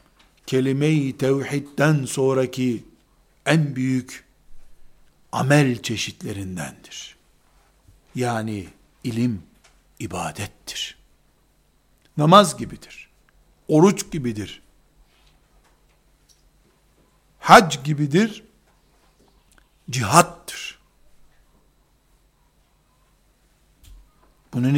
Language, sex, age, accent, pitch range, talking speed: Turkish, male, 60-79, native, 130-175 Hz, 45 wpm